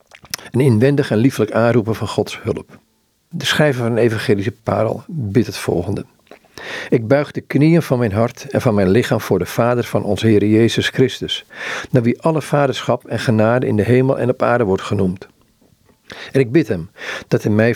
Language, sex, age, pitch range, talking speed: Dutch, male, 50-69, 110-135 Hz, 195 wpm